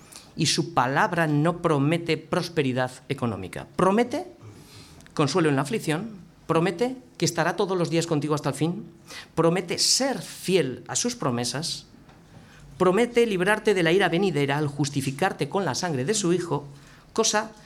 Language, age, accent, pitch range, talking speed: Spanish, 50-69, Spanish, 140-185 Hz, 145 wpm